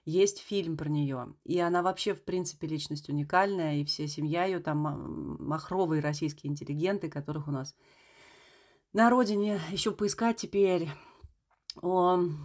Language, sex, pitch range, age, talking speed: Russian, female, 150-195 Hz, 30-49, 135 wpm